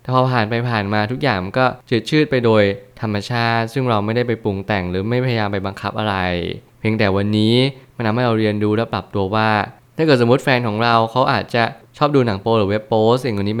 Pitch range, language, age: 100-120 Hz, Thai, 20-39